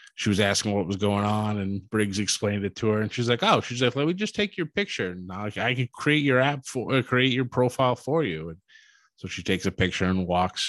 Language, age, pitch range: English, 20-39, 100-135 Hz